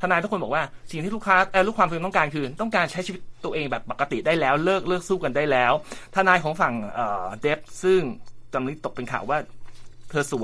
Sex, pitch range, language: male, 125-185 Hz, Thai